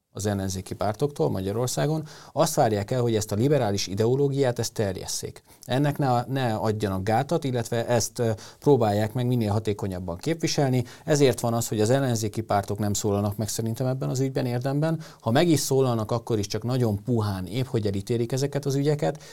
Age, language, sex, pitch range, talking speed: 30-49, Hungarian, male, 105-135 Hz, 170 wpm